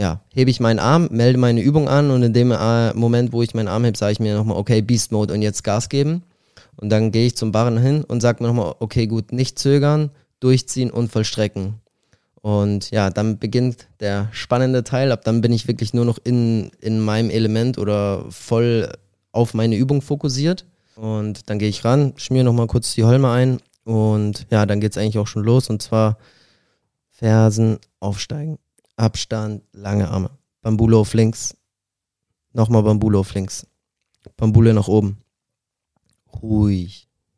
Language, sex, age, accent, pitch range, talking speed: German, male, 20-39, German, 105-120 Hz, 175 wpm